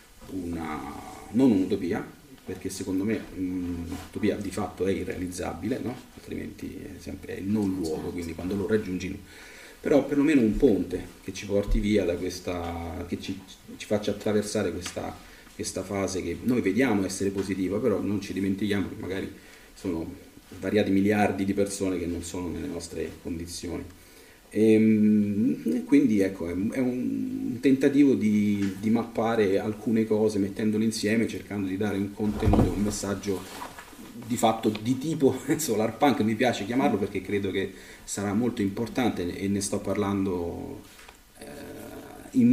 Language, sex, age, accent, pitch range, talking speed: Italian, male, 40-59, native, 95-110 Hz, 145 wpm